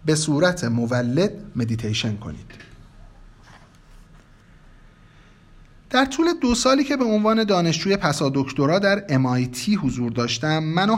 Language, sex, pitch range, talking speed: Persian, male, 125-180 Hz, 110 wpm